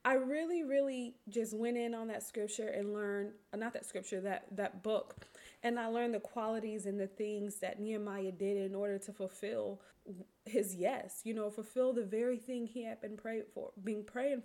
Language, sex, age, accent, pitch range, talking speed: English, female, 20-39, American, 210-255 Hz, 195 wpm